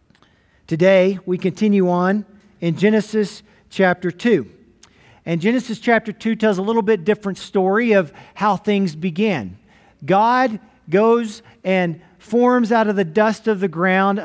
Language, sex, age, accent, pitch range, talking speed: English, male, 40-59, American, 180-225 Hz, 140 wpm